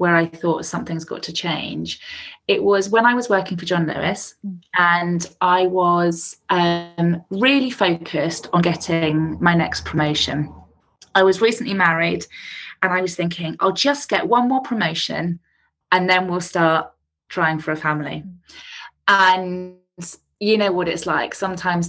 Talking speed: 155 wpm